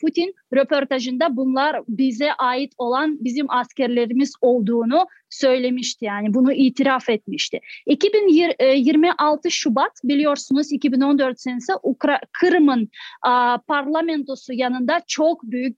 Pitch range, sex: 255-305 Hz, female